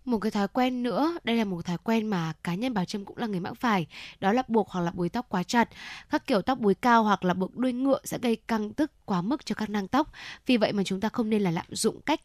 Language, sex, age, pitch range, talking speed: Vietnamese, female, 10-29, 190-250 Hz, 295 wpm